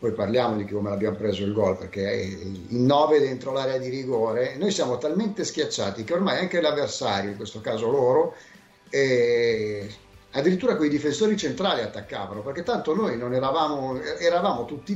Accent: native